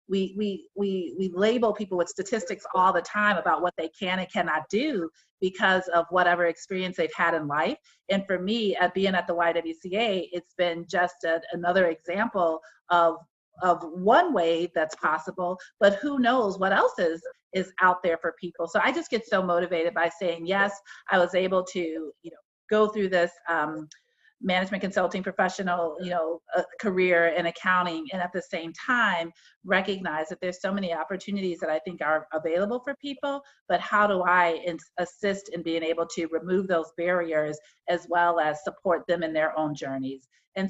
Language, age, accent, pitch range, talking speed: English, 40-59, American, 170-210 Hz, 185 wpm